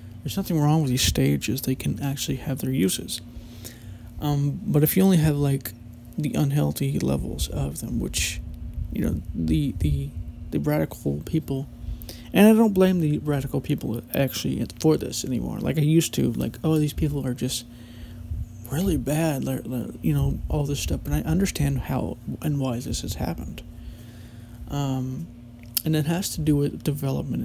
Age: 20-39